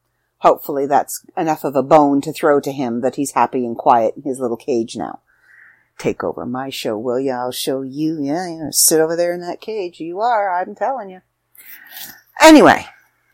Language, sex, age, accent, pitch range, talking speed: English, female, 40-59, American, 130-180 Hz, 200 wpm